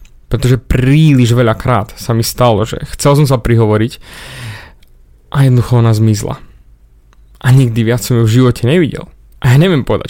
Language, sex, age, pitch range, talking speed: Slovak, male, 20-39, 115-140 Hz, 165 wpm